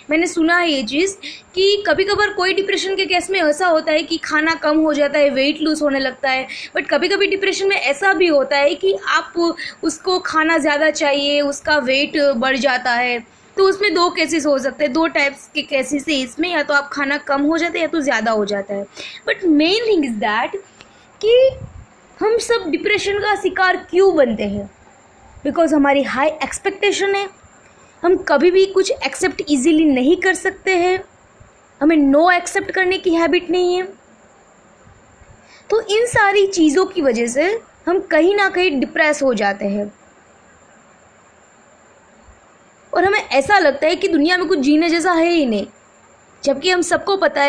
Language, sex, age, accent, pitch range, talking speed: Hindi, female, 20-39, native, 285-370 Hz, 180 wpm